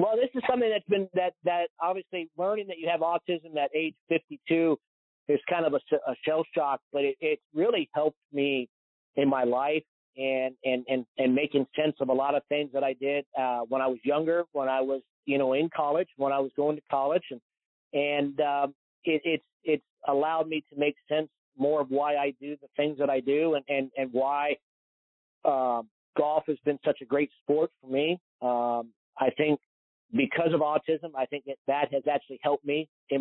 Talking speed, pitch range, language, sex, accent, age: 210 wpm, 135-155 Hz, English, male, American, 40-59